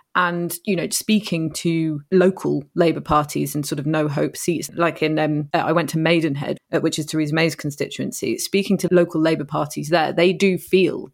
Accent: British